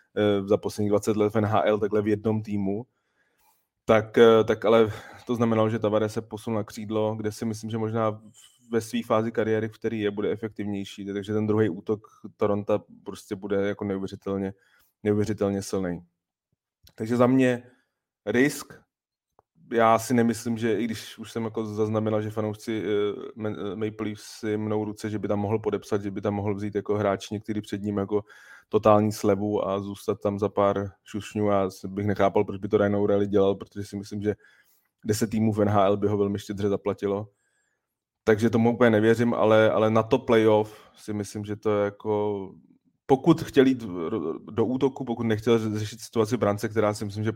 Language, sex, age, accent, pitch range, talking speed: Czech, male, 20-39, native, 100-110 Hz, 180 wpm